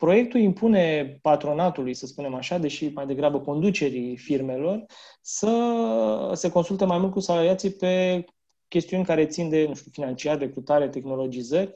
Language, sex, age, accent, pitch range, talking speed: Romanian, male, 20-39, native, 140-180 Hz, 145 wpm